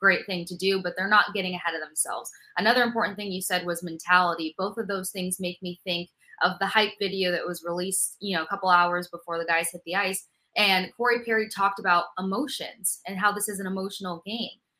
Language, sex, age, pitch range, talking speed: English, female, 20-39, 175-205 Hz, 225 wpm